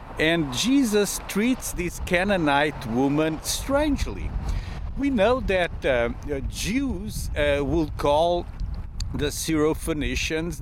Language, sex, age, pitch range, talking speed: English, male, 50-69, 145-230 Hz, 95 wpm